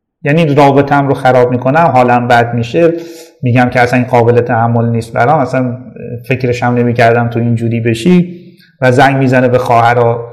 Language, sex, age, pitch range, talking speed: Persian, male, 30-49, 120-180 Hz, 175 wpm